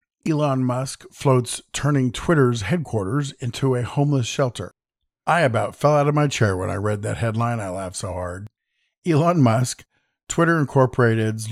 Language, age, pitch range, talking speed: English, 50-69, 110-145 Hz, 155 wpm